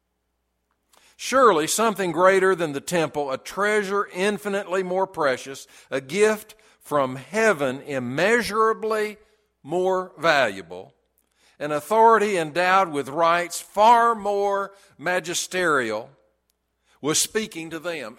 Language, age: English, 60-79